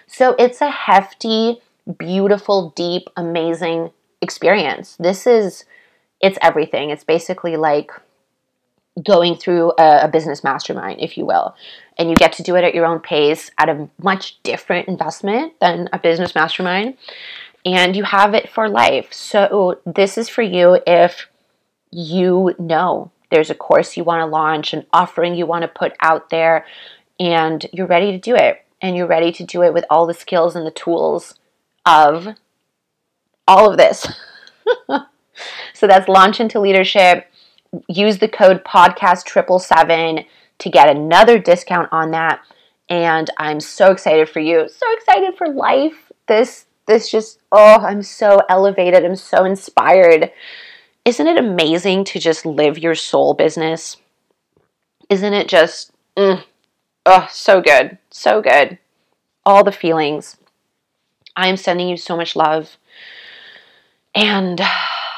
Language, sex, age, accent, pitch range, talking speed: English, female, 30-49, American, 165-205 Hz, 145 wpm